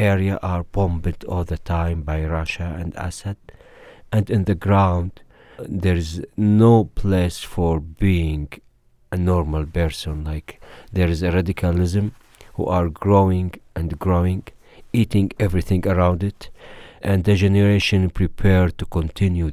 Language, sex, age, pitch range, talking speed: English, male, 50-69, 80-95 Hz, 130 wpm